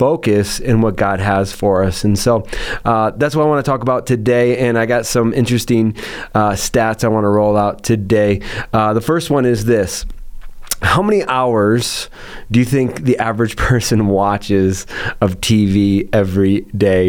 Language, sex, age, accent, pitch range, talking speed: English, male, 30-49, American, 105-125 Hz, 180 wpm